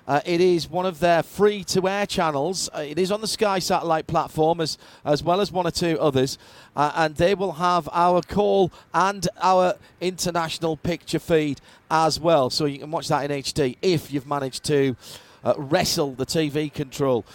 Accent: British